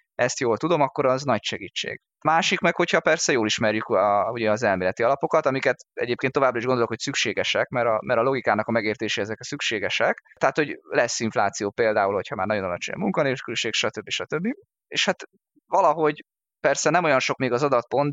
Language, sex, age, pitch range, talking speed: Hungarian, male, 20-39, 110-155 Hz, 190 wpm